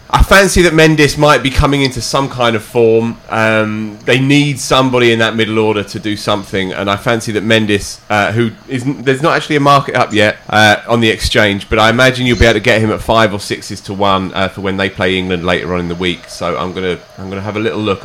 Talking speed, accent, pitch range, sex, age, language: 265 wpm, British, 95-125 Hz, male, 30-49, English